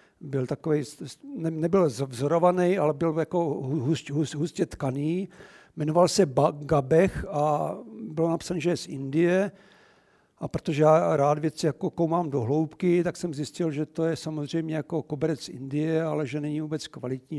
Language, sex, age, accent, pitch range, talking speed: Czech, male, 60-79, native, 145-175 Hz, 165 wpm